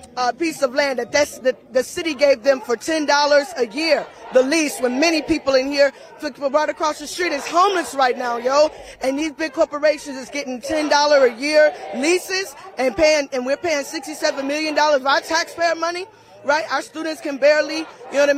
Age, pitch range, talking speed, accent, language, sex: 20-39, 275-315 Hz, 200 wpm, American, English, female